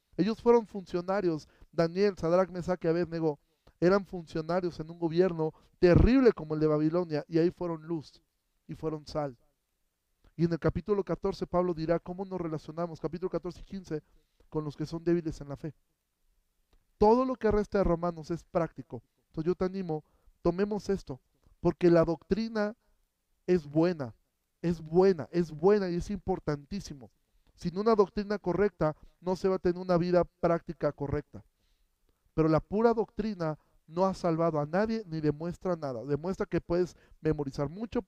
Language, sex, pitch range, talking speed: Spanish, male, 155-190 Hz, 160 wpm